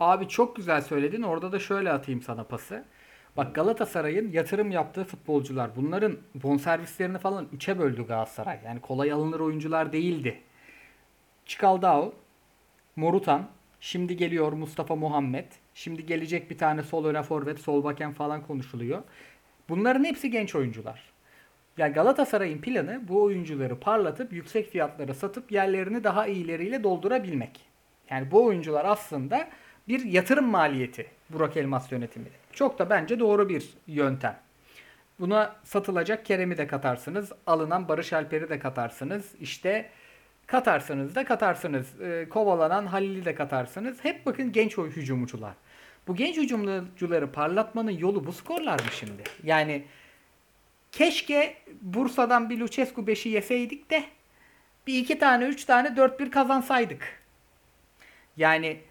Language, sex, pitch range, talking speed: Turkish, male, 145-215 Hz, 125 wpm